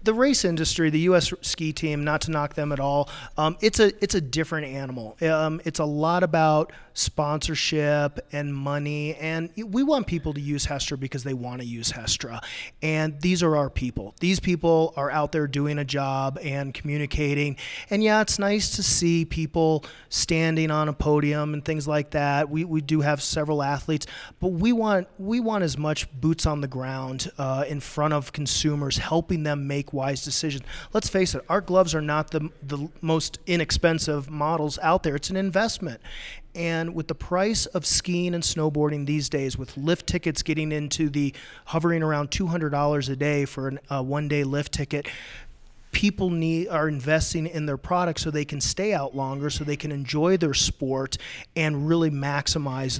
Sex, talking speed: male, 185 wpm